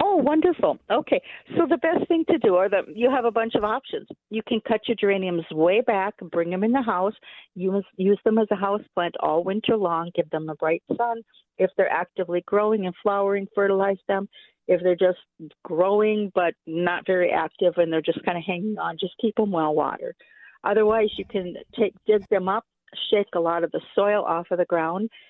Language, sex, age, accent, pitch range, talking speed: English, female, 50-69, American, 175-215 Hz, 220 wpm